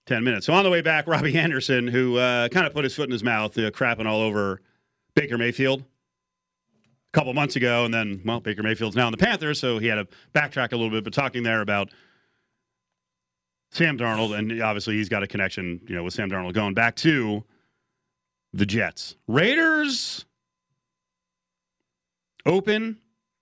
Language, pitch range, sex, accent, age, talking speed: English, 110-150 Hz, male, American, 40-59, 180 wpm